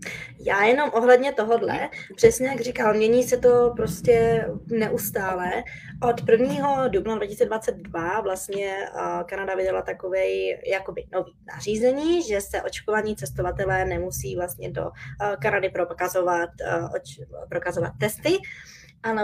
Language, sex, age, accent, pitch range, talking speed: Czech, female, 20-39, native, 180-215 Hz, 105 wpm